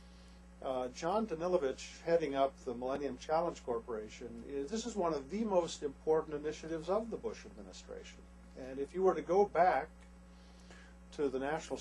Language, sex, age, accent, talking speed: English, male, 50-69, American, 160 wpm